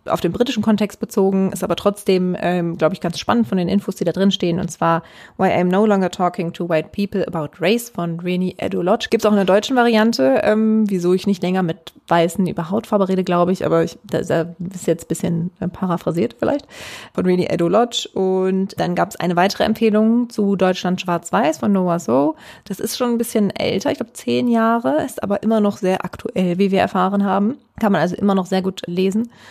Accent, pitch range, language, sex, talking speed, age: German, 180-215 Hz, German, female, 225 wpm, 20-39